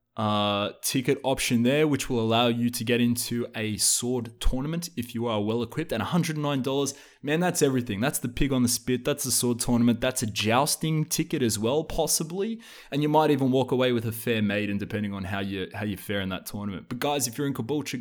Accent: Australian